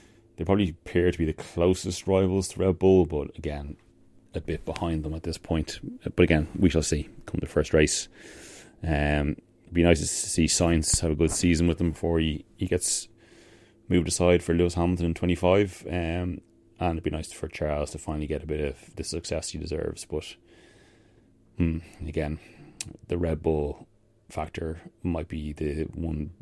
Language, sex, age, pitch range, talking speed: English, male, 30-49, 80-100 Hz, 190 wpm